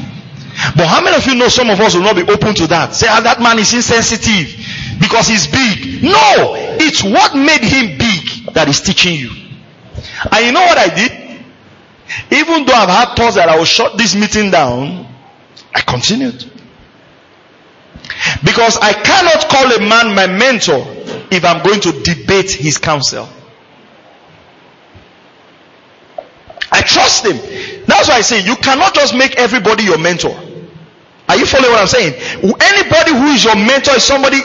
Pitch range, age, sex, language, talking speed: 180-265 Hz, 40-59, male, English, 165 wpm